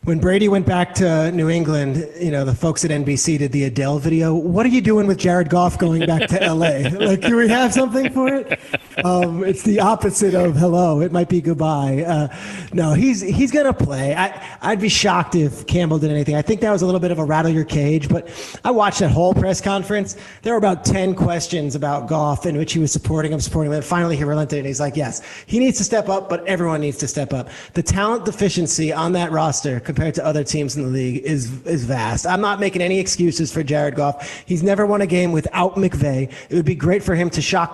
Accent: American